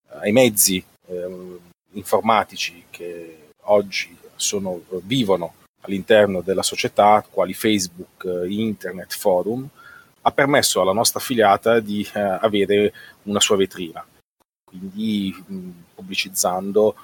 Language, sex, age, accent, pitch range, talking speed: Italian, male, 30-49, native, 95-115 Hz, 105 wpm